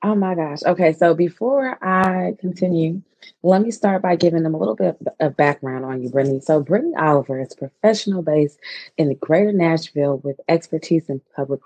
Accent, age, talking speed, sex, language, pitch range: American, 20-39, 185 wpm, female, English, 140-175 Hz